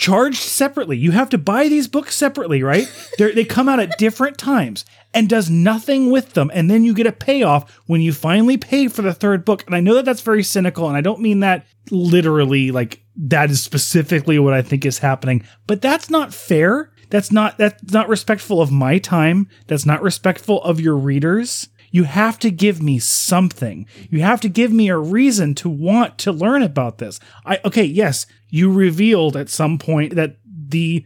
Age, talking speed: 30-49, 205 wpm